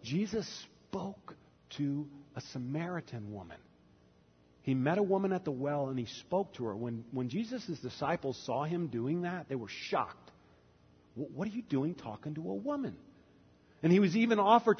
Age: 40-59